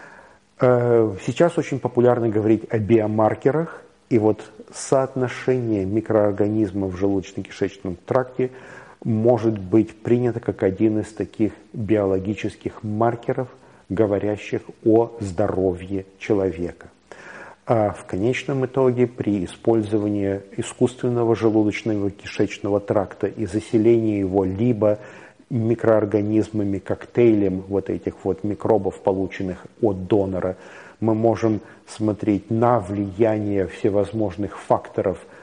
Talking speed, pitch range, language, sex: 90 wpm, 100-120 Hz, Russian, male